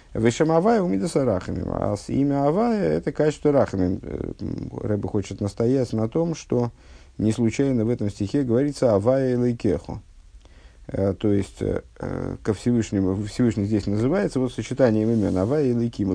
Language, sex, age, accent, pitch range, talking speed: Russian, male, 50-69, native, 95-125 Hz, 140 wpm